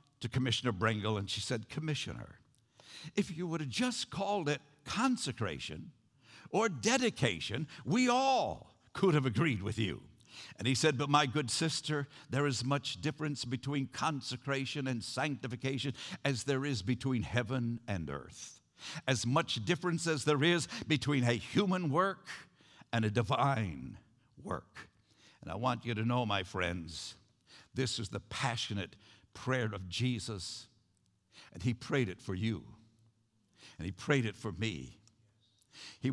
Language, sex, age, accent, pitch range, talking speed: English, male, 70-89, American, 115-155 Hz, 145 wpm